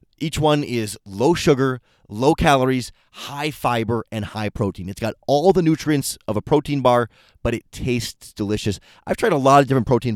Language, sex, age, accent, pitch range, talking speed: English, male, 30-49, American, 105-145 Hz, 190 wpm